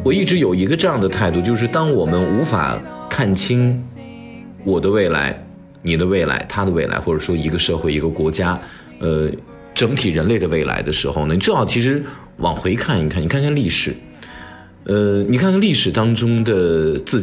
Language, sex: Chinese, male